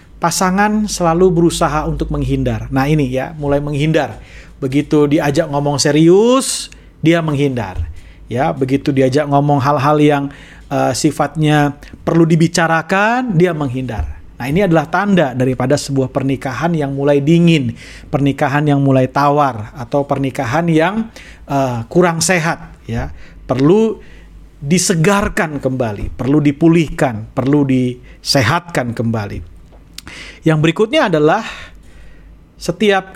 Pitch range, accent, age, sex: 130-165 Hz, native, 40-59, male